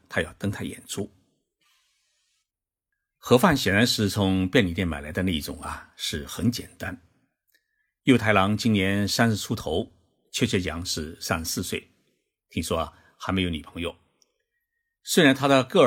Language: Chinese